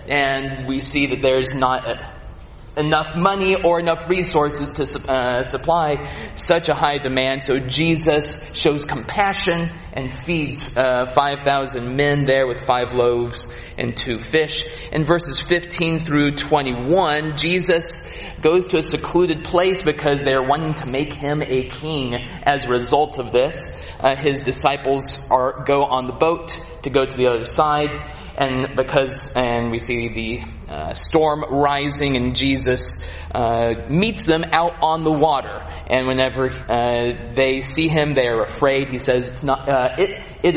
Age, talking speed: 30-49, 155 wpm